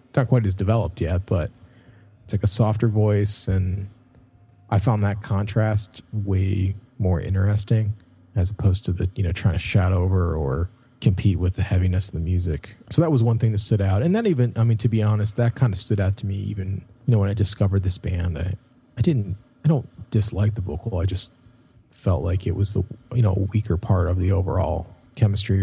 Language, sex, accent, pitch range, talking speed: English, male, American, 95-115 Hz, 215 wpm